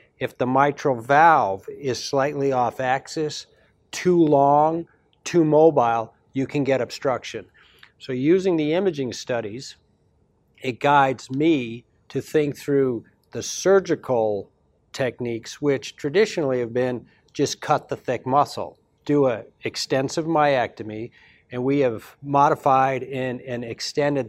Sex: male